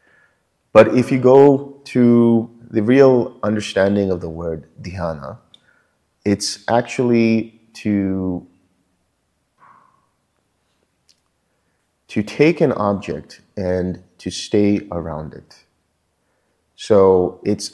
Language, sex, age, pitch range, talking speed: English, male, 30-49, 95-110 Hz, 90 wpm